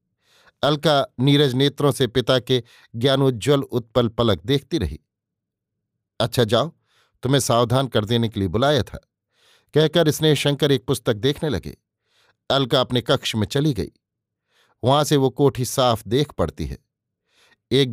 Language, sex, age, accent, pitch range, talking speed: Hindi, male, 50-69, native, 115-145 Hz, 145 wpm